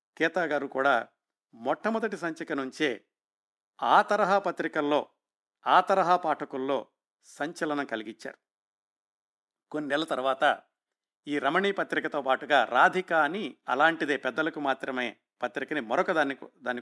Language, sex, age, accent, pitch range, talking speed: Telugu, male, 50-69, native, 140-180 Hz, 105 wpm